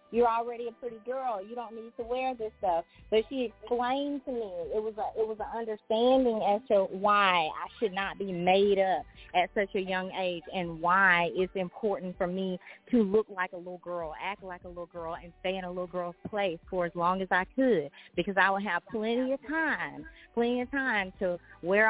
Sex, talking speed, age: female, 220 wpm, 30-49